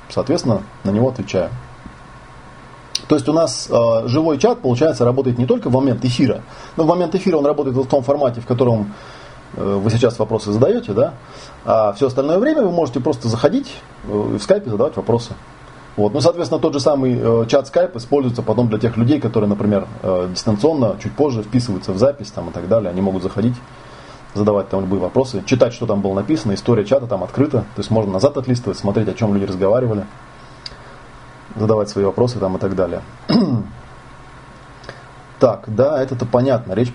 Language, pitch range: Russian, 105-135 Hz